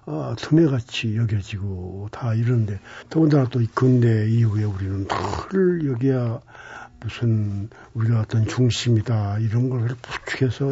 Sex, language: male, Korean